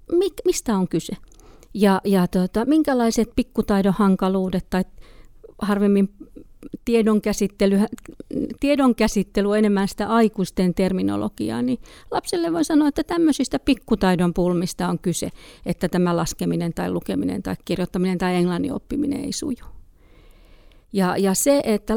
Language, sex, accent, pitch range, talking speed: Finnish, female, native, 185-255 Hz, 115 wpm